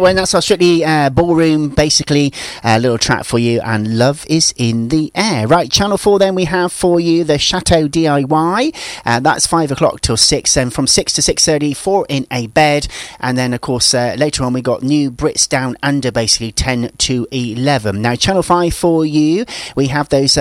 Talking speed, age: 210 wpm, 40-59